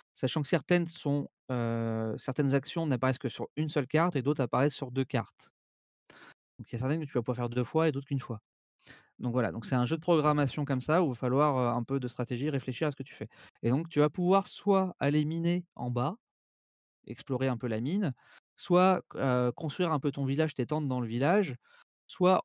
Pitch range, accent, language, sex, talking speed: 120-150 Hz, French, French, male, 235 wpm